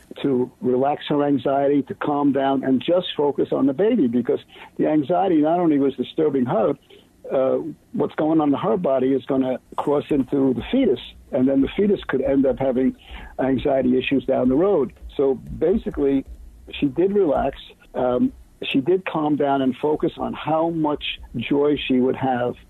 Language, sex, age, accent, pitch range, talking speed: English, male, 60-79, American, 135-180 Hz, 175 wpm